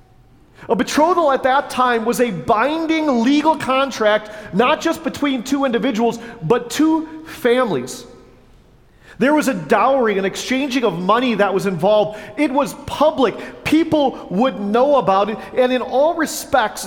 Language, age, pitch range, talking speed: English, 40-59, 220-275 Hz, 145 wpm